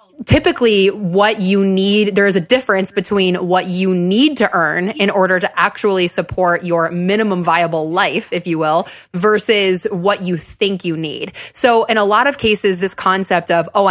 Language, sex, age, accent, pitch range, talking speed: English, female, 20-39, American, 175-210 Hz, 180 wpm